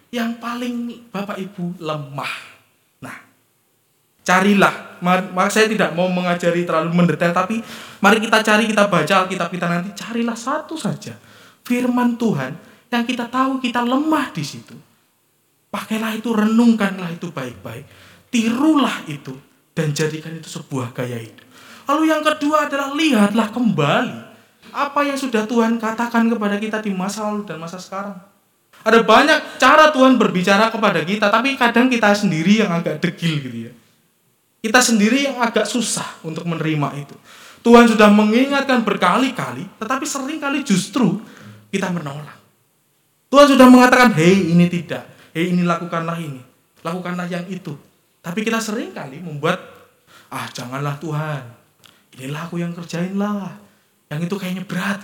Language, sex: Indonesian, male